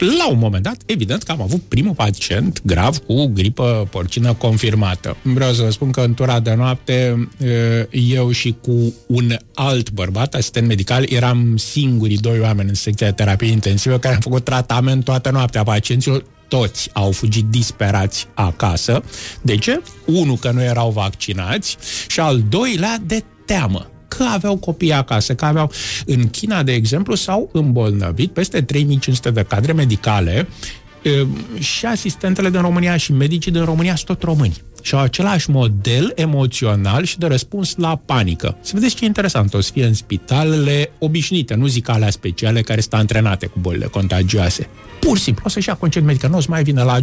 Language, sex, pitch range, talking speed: Romanian, male, 110-145 Hz, 175 wpm